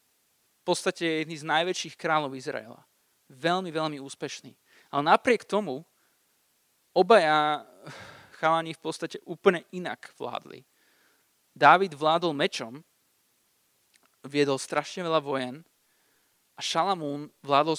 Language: Slovak